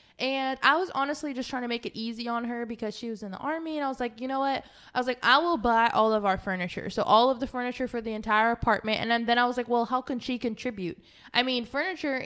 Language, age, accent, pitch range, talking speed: English, 20-39, American, 210-255 Hz, 285 wpm